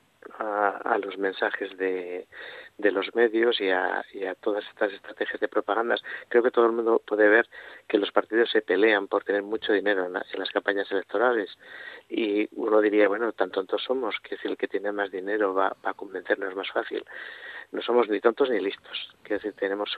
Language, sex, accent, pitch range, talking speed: Spanish, male, Spanish, 100-130 Hz, 190 wpm